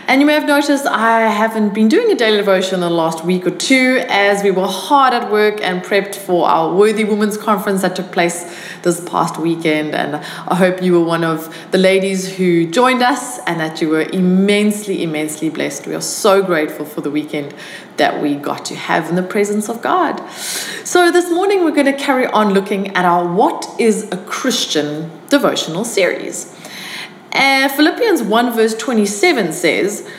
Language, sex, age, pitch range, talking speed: English, female, 20-39, 175-255 Hz, 190 wpm